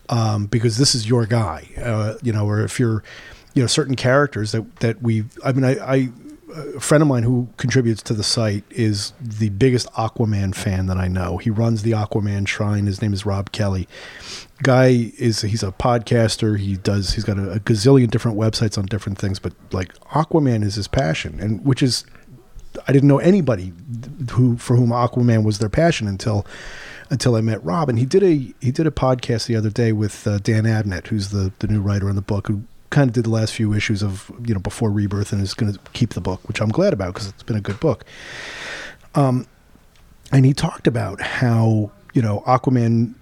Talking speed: 210 wpm